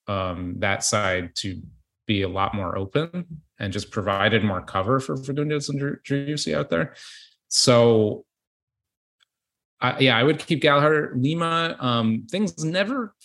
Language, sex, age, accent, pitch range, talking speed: English, male, 30-49, American, 95-130 Hz, 145 wpm